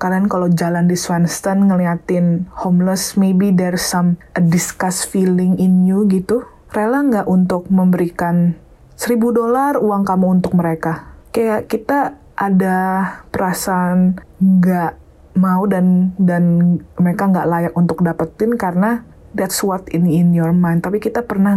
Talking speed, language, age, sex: 135 wpm, Indonesian, 20-39, female